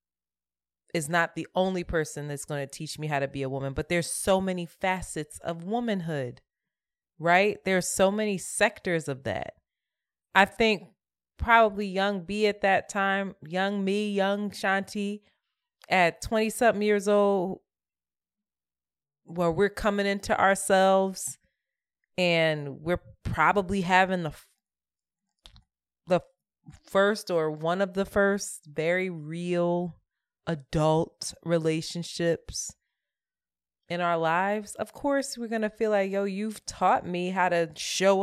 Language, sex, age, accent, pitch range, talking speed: English, female, 30-49, American, 165-215 Hz, 130 wpm